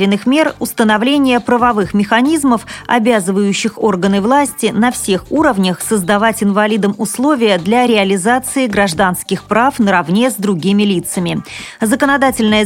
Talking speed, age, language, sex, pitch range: 105 wpm, 30-49, Russian, female, 200-245 Hz